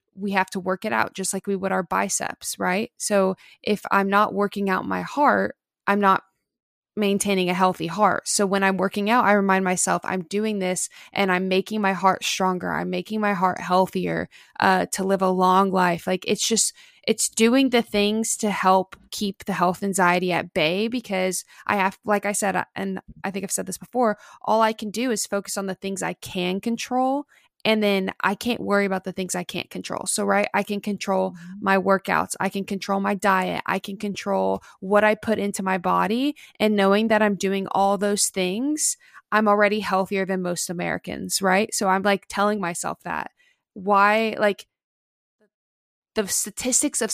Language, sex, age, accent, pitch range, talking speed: English, female, 20-39, American, 190-215 Hz, 195 wpm